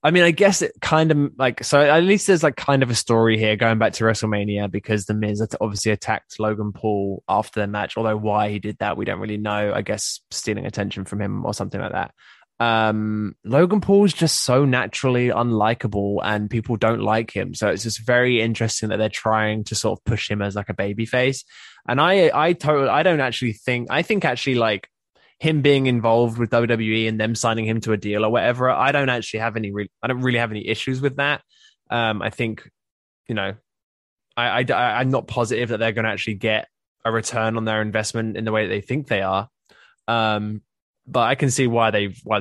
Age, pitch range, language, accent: 10-29, 105-125 Hz, English, British